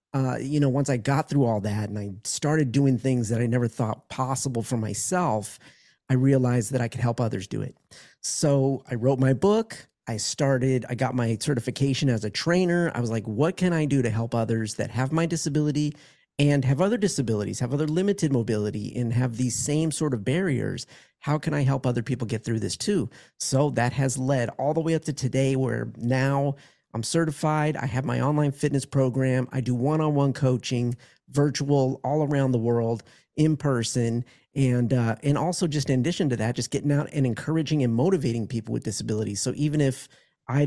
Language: English